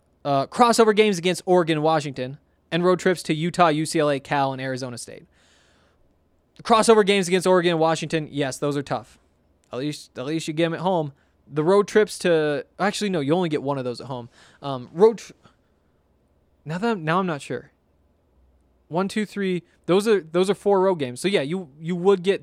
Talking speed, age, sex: 205 wpm, 20-39, male